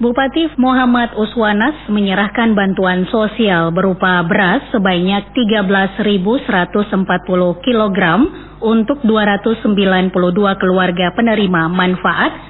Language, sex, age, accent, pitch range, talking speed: Indonesian, female, 30-49, native, 185-235 Hz, 75 wpm